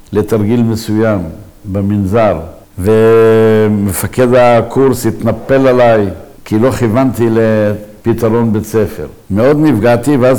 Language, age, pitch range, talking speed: Hebrew, 60-79, 105-125 Hz, 90 wpm